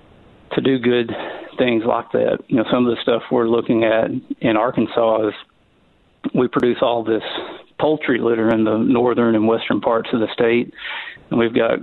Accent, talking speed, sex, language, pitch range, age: American, 185 wpm, male, English, 110-120 Hz, 40-59